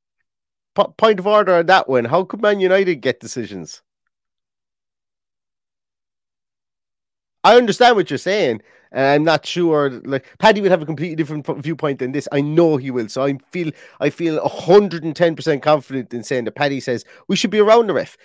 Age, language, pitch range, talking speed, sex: 30-49, English, 120-175 Hz, 175 wpm, male